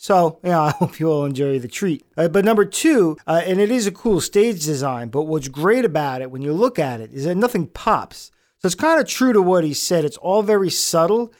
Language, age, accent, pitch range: English, 40-59, American, 150-190 Hz